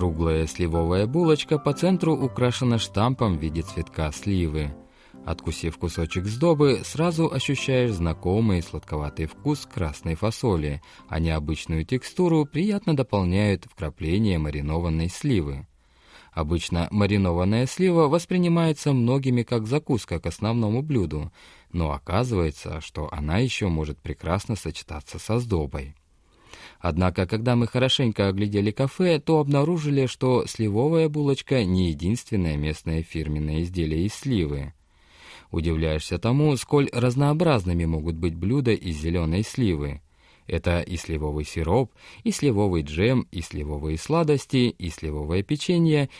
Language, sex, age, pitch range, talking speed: Russian, male, 20-39, 80-130 Hz, 115 wpm